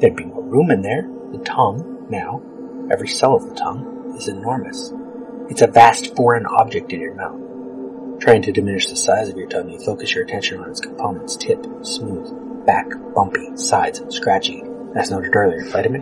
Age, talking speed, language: 30-49, 185 wpm, English